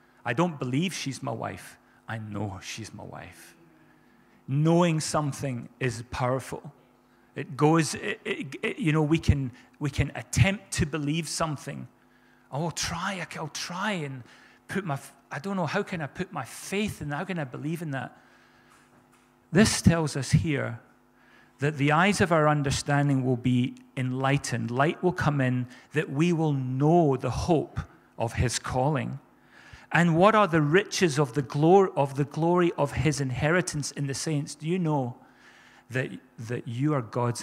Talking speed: 170 wpm